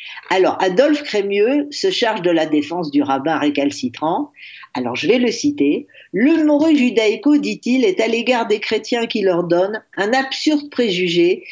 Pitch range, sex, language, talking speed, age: 175-275 Hz, female, French, 165 wpm, 50-69